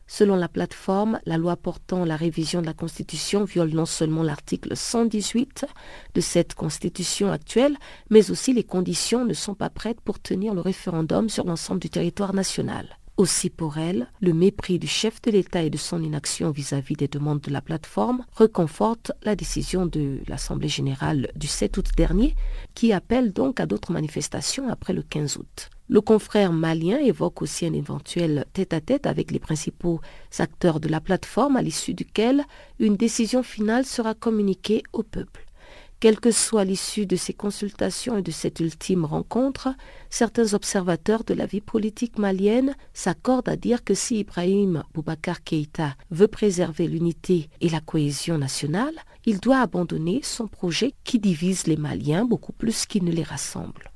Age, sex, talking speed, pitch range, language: 50-69, female, 165 wpm, 165-220 Hz, French